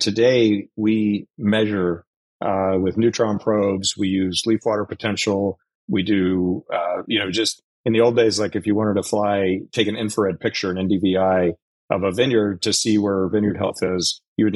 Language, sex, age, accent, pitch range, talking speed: English, male, 40-59, American, 95-110 Hz, 185 wpm